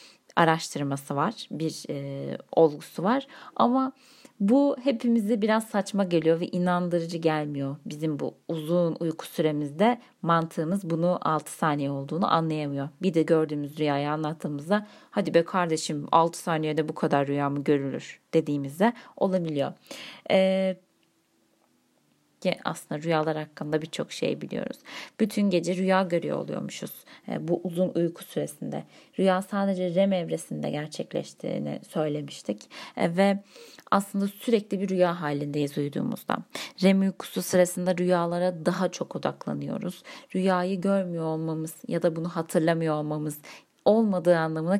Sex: female